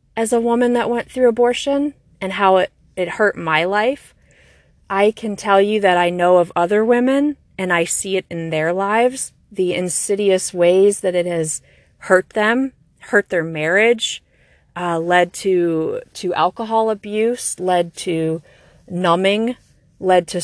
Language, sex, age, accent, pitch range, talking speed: English, female, 30-49, American, 175-215 Hz, 155 wpm